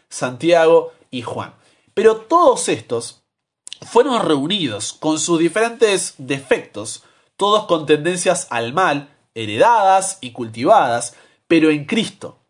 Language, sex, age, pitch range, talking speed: Spanish, male, 30-49, 135-200 Hz, 110 wpm